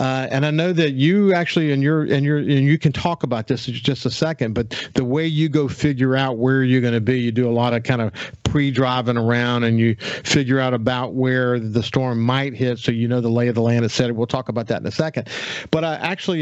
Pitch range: 120-150 Hz